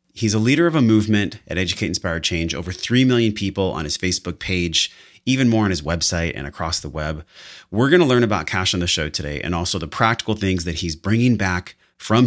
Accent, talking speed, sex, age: American, 230 wpm, male, 30-49